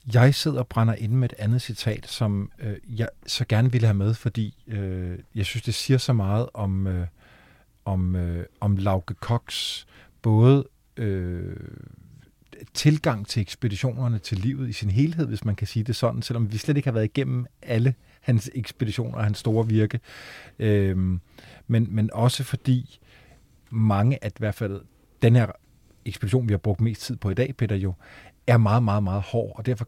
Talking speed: 185 wpm